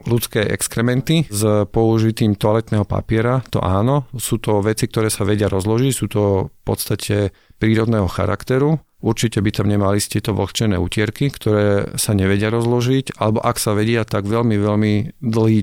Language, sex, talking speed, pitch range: Slovak, male, 155 wpm, 105-120 Hz